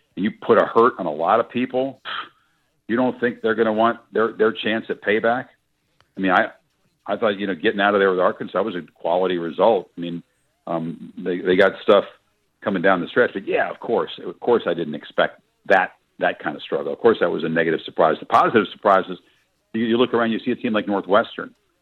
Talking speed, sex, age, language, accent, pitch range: 235 wpm, male, 50-69, English, American, 95-120 Hz